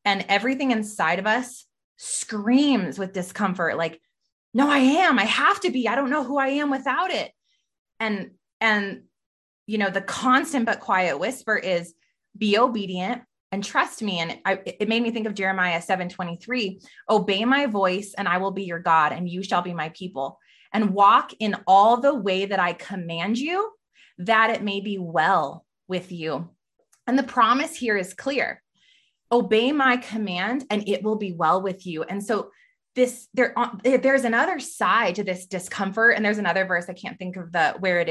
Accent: American